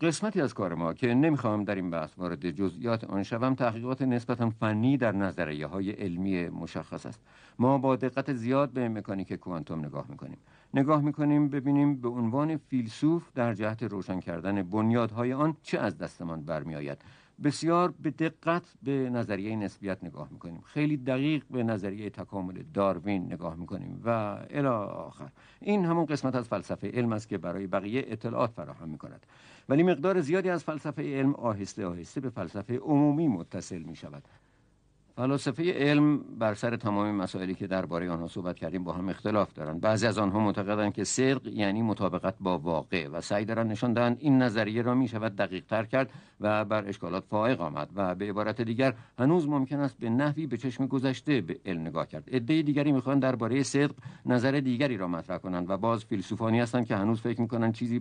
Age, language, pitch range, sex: 50-69, Persian, 95-135 Hz, male